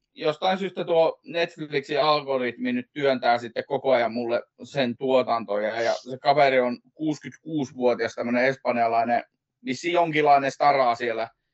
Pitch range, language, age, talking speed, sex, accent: 120-140 Hz, Finnish, 30-49, 125 wpm, male, native